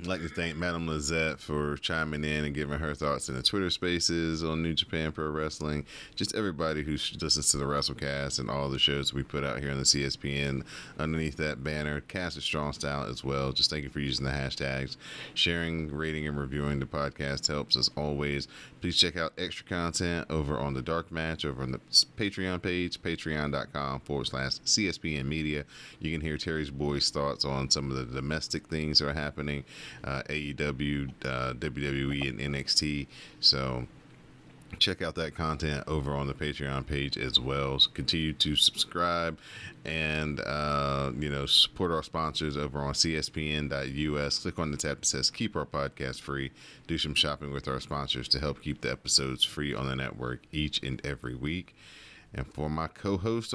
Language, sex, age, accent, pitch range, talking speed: English, male, 30-49, American, 70-80 Hz, 185 wpm